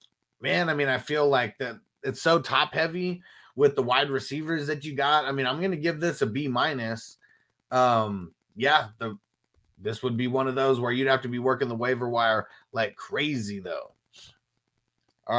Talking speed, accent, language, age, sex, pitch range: 190 wpm, American, English, 30-49, male, 120-180 Hz